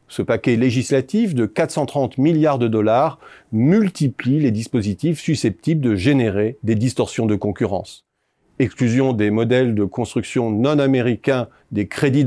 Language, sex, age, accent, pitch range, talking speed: French, male, 40-59, French, 115-145 Hz, 130 wpm